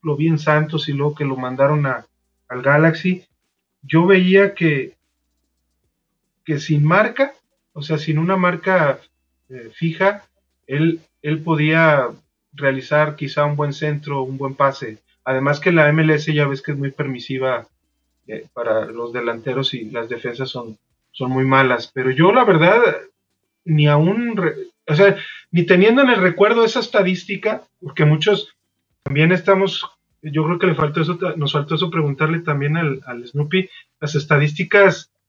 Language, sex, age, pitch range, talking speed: Spanish, male, 30-49, 135-185 Hz, 160 wpm